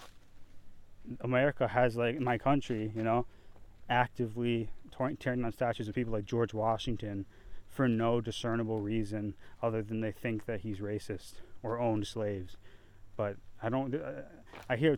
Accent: American